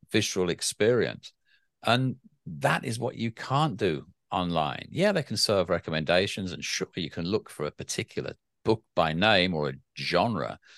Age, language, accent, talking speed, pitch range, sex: 50-69, English, British, 160 wpm, 85-110 Hz, male